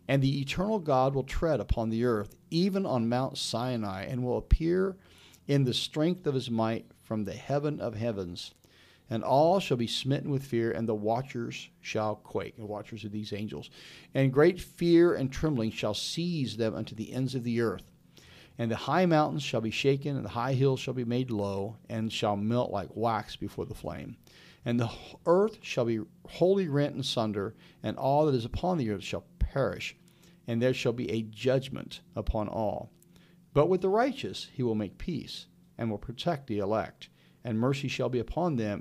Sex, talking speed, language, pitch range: male, 195 wpm, English, 110-150 Hz